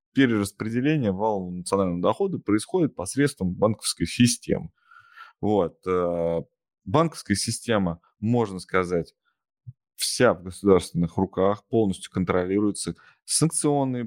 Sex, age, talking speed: male, 20-39, 85 wpm